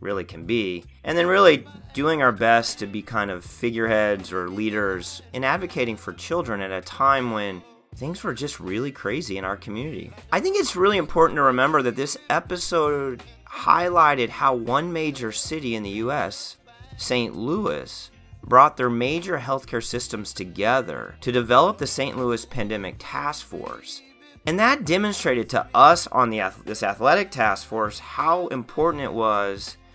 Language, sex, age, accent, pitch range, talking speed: English, male, 30-49, American, 95-125 Hz, 160 wpm